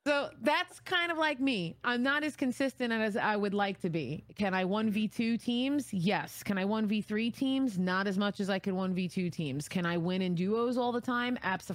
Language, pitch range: English, 155-220 Hz